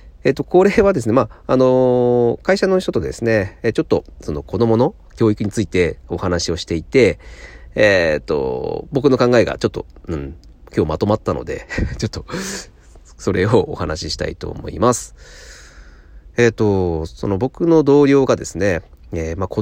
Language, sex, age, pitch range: Japanese, male, 40-59, 80-130 Hz